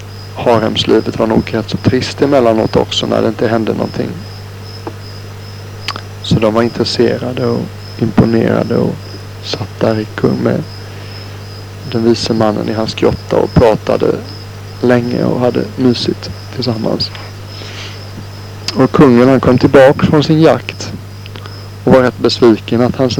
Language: Swedish